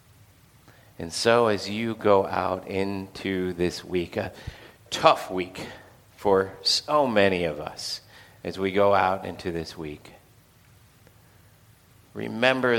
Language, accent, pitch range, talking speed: English, American, 95-115 Hz, 115 wpm